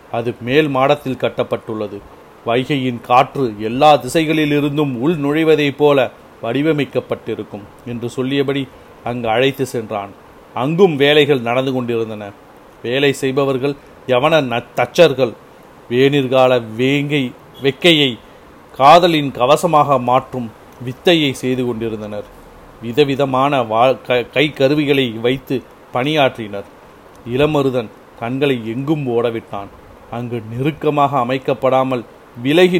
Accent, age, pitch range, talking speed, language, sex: native, 40-59, 120-145 Hz, 85 wpm, Tamil, male